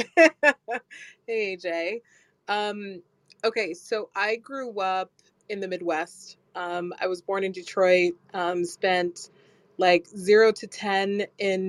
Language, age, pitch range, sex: English, 20-39, 180-205 Hz, female